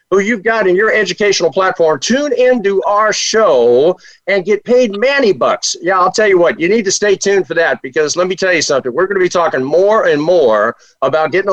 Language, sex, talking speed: English, male, 230 wpm